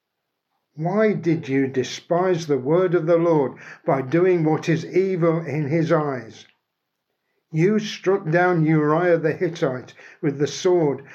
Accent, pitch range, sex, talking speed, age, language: British, 145-175 Hz, male, 140 wpm, 60-79, English